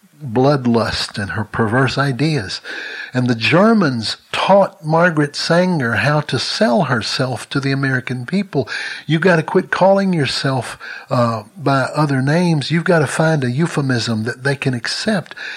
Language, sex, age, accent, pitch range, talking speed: English, male, 60-79, American, 115-150 Hz, 150 wpm